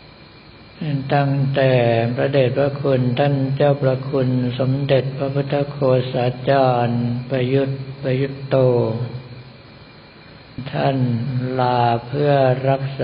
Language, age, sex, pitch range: Thai, 60-79, male, 120-135 Hz